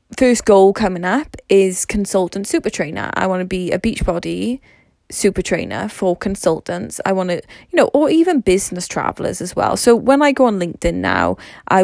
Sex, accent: female, British